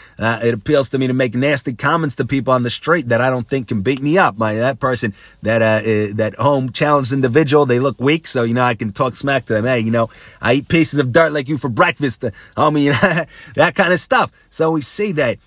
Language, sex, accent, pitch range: English, male, American, 115-140 Hz